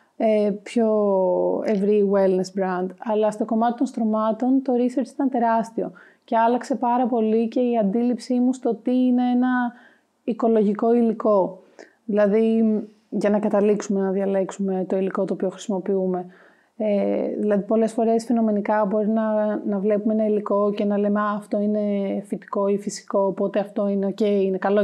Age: 30-49